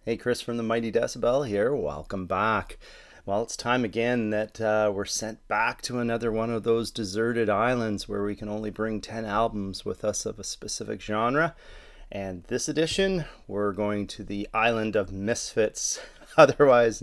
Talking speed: 175 wpm